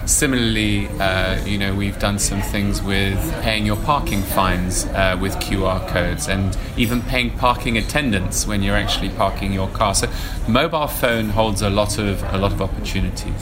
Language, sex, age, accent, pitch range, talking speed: English, male, 20-39, British, 100-110 Hz, 175 wpm